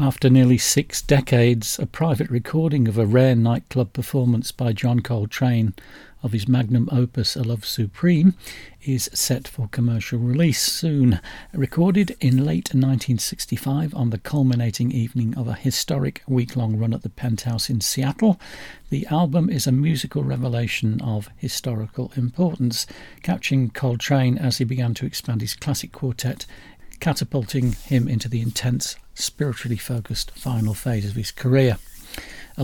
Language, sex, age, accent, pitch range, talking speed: English, male, 50-69, British, 115-135 Hz, 145 wpm